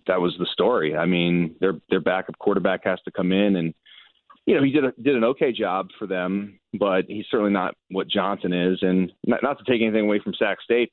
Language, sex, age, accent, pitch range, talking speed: English, male, 30-49, American, 100-125 Hz, 235 wpm